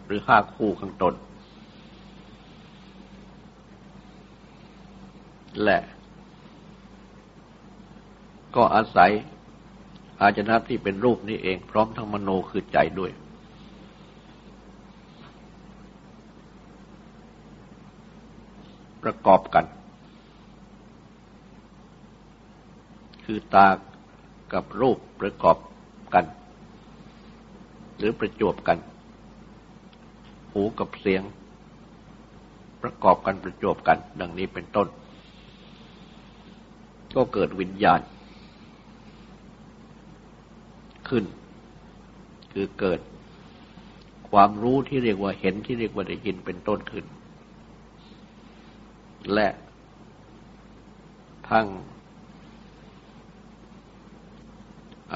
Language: Thai